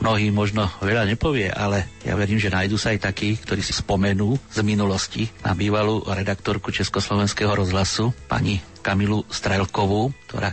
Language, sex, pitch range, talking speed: Slovak, male, 100-115 Hz, 150 wpm